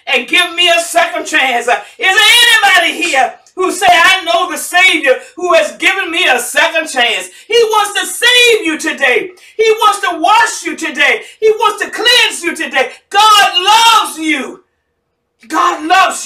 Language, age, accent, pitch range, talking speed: English, 50-69, American, 275-370 Hz, 170 wpm